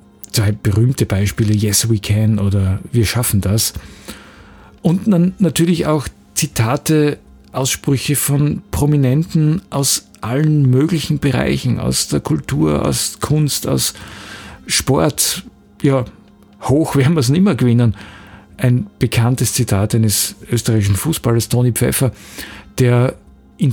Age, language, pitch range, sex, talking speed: 50-69, German, 105-130 Hz, male, 120 wpm